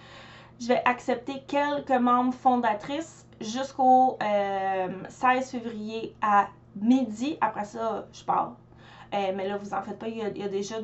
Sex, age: female, 20-39